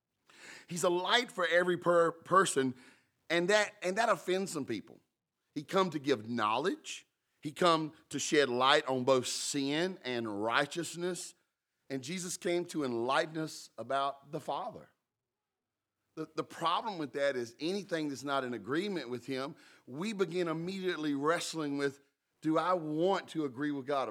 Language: English